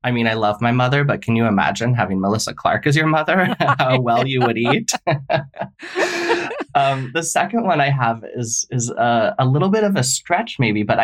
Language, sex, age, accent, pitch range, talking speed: English, male, 20-39, American, 110-140 Hz, 205 wpm